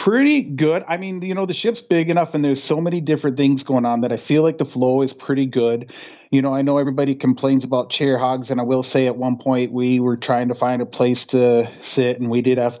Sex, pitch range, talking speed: male, 120-140 Hz, 265 wpm